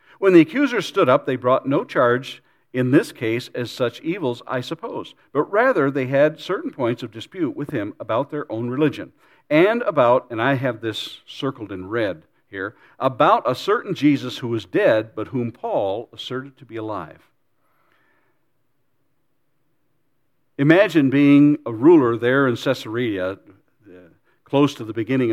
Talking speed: 155 wpm